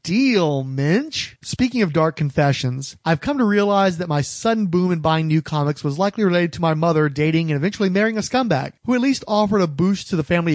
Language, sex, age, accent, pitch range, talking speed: English, male, 30-49, American, 155-195 Hz, 220 wpm